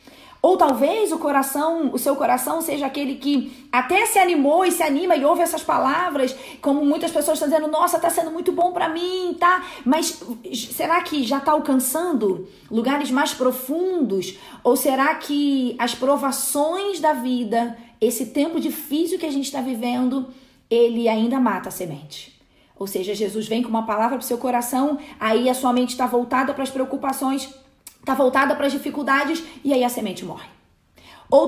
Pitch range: 230-295 Hz